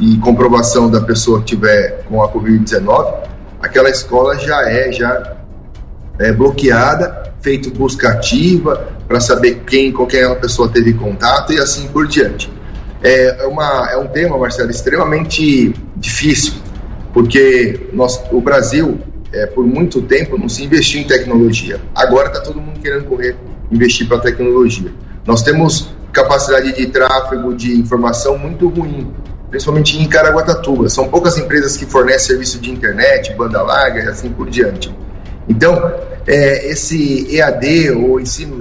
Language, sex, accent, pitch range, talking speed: Portuguese, male, Brazilian, 115-150 Hz, 145 wpm